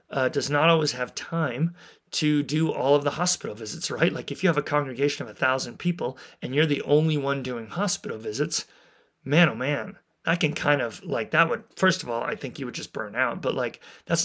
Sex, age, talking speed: male, 30-49, 230 wpm